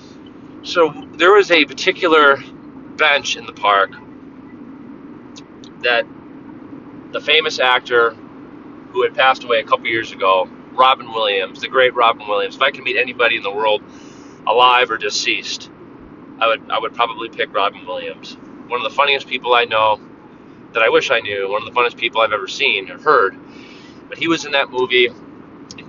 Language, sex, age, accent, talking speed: English, male, 30-49, American, 175 wpm